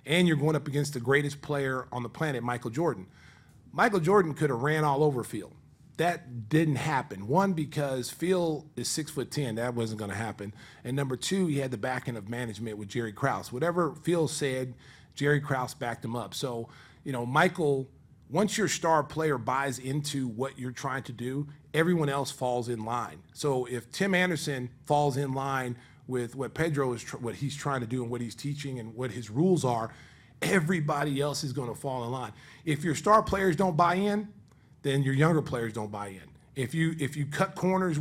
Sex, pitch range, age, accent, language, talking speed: male, 125-155 Hz, 40-59, American, English, 205 wpm